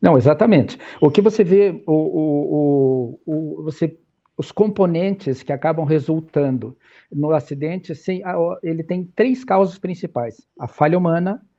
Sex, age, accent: male, 50-69, Brazilian